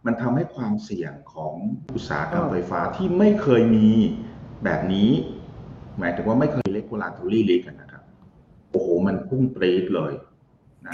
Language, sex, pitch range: Thai, male, 90-125 Hz